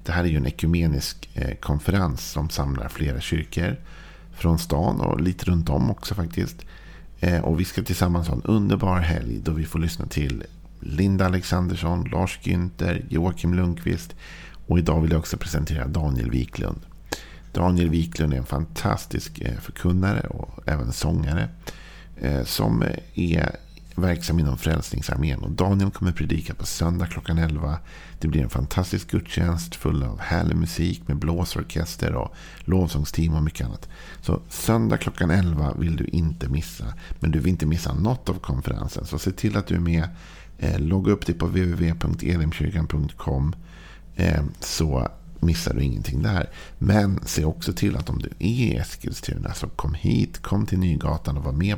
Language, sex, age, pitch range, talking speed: Swedish, male, 50-69, 75-90 Hz, 160 wpm